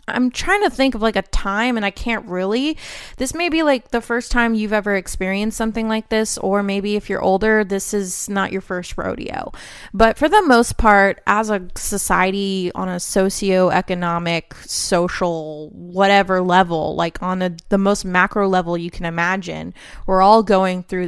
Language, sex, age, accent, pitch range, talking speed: English, female, 20-39, American, 185-225 Hz, 180 wpm